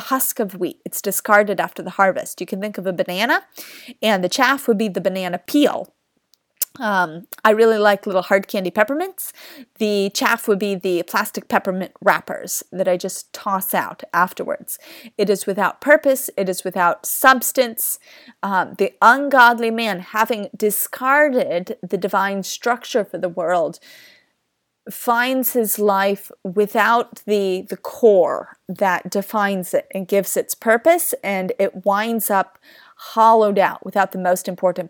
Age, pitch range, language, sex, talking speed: 30-49, 190-240 Hz, English, female, 150 wpm